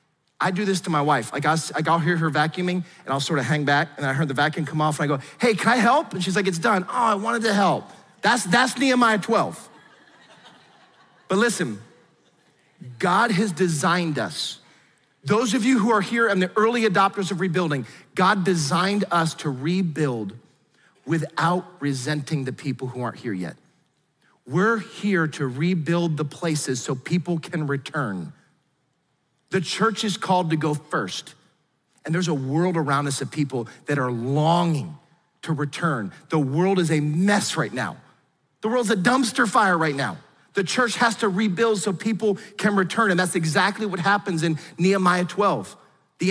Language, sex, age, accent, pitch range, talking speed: English, male, 40-59, American, 155-205 Hz, 180 wpm